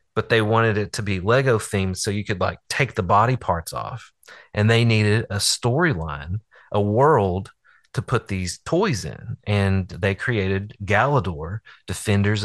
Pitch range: 95-115 Hz